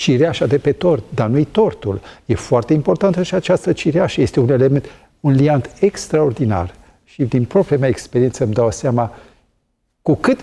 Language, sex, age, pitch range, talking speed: Romanian, male, 50-69, 120-155 Hz, 165 wpm